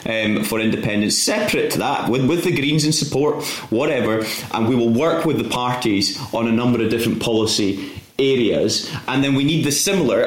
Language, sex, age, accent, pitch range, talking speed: English, male, 30-49, British, 110-145 Hz, 195 wpm